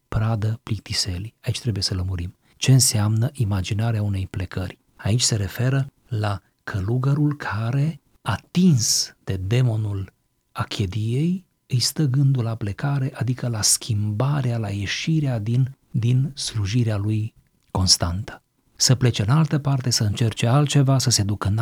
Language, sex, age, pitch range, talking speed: Romanian, male, 40-59, 105-140 Hz, 135 wpm